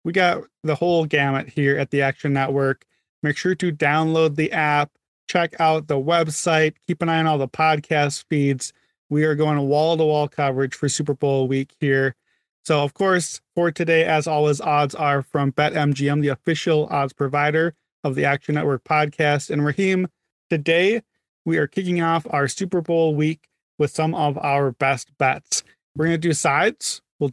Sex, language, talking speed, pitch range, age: male, English, 180 wpm, 140-165 Hz, 30-49